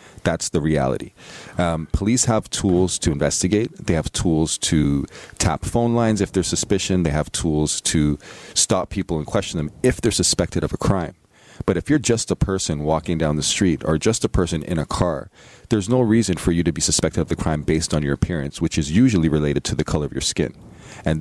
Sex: male